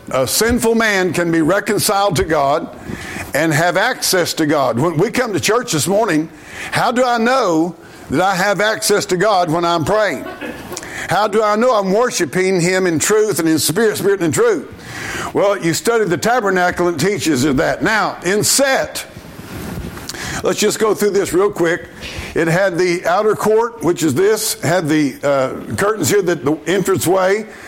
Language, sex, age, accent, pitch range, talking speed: English, male, 50-69, American, 170-215 Hz, 185 wpm